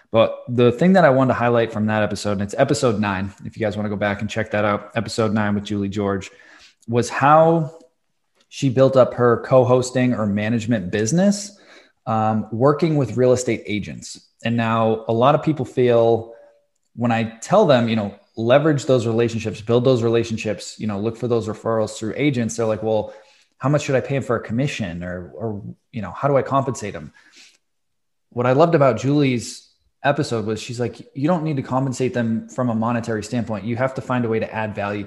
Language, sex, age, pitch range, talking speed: English, male, 20-39, 110-140 Hz, 210 wpm